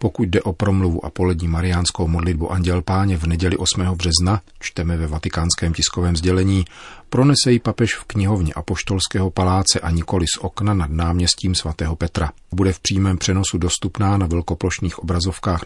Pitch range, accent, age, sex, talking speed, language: 85-95 Hz, native, 40-59, male, 155 wpm, Czech